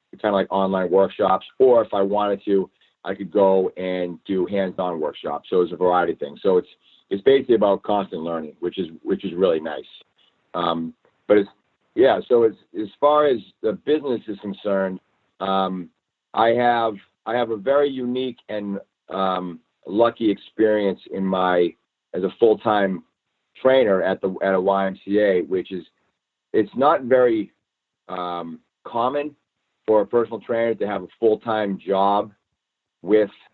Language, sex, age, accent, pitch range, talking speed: English, male, 50-69, American, 95-120 Hz, 160 wpm